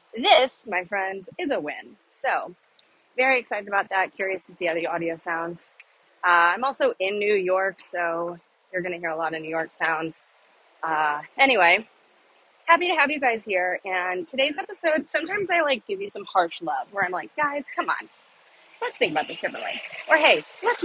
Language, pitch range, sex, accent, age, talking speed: English, 185-275 Hz, female, American, 30-49, 195 wpm